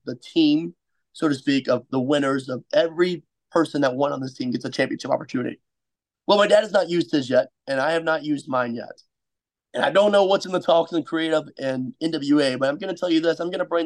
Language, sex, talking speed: English, male, 255 wpm